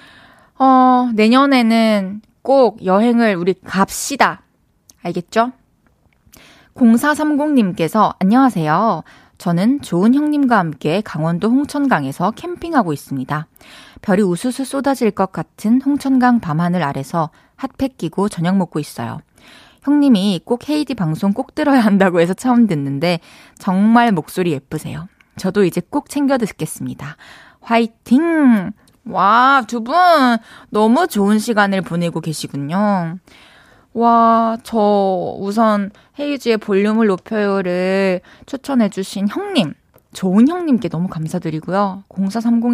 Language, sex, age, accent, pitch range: Korean, female, 20-39, native, 180-245 Hz